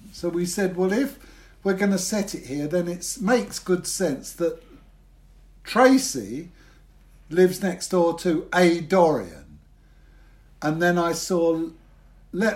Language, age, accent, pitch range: English, 60-79, British, 145-195 Hz